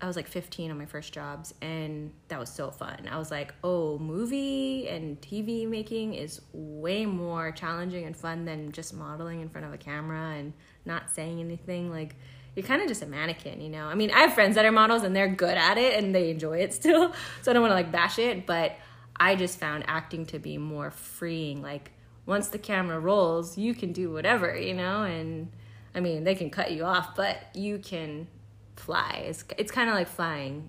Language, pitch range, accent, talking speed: English, 155-195 Hz, American, 215 wpm